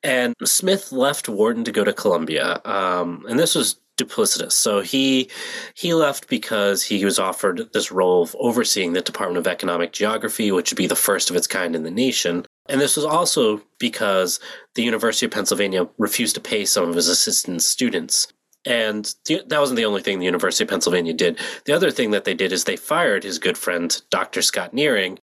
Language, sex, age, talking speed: English, male, 30-49, 200 wpm